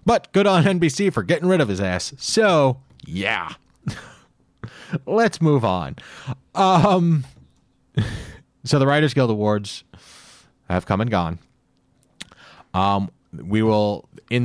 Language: English